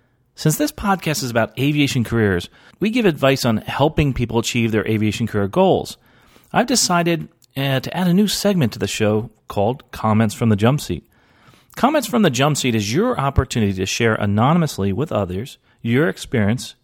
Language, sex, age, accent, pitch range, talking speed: English, male, 40-59, American, 105-155 Hz, 180 wpm